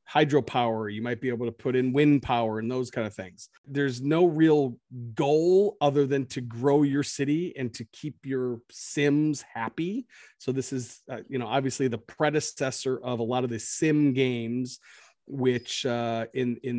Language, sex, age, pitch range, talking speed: English, male, 40-59, 120-145 Hz, 180 wpm